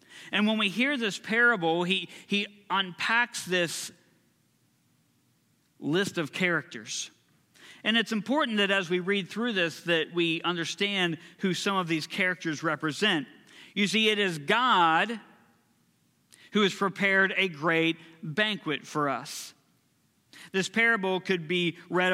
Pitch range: 165-190 Hz